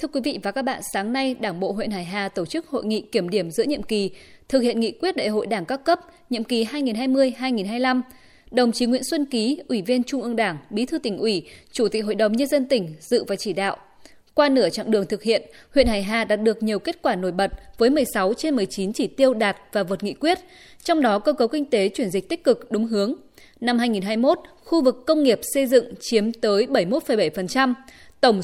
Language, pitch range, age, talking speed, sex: Vietnamese, 205-275 Hz, 20-39, 230 wpm, female